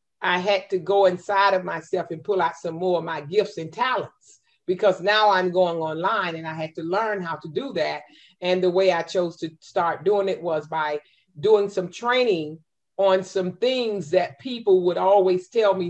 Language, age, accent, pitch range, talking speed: English, 40-59, American, 165-200 Hz, 205 wpm